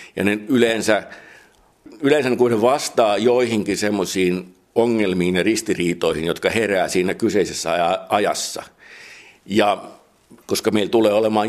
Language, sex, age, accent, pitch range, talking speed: Finnish, male, 60-79, native, 95-115 Hz, 105 wpm